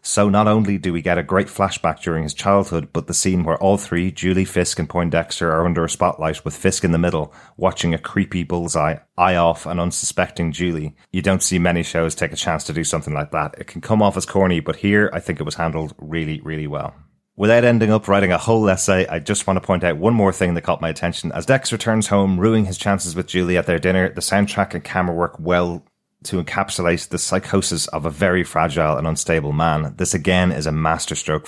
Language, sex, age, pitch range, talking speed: English, male, 30-49, 80-95 Hz, 235 wpm